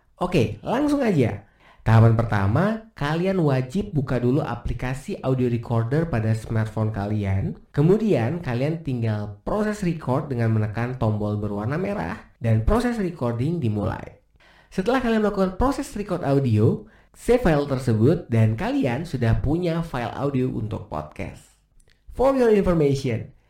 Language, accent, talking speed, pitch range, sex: Indonesian, native, 125 wpm, 115-165 Hz, male